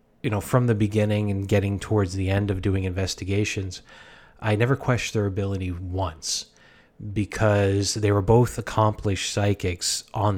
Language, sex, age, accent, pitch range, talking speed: English, male, 30-49, American, 95-105 Hz, 150 wpm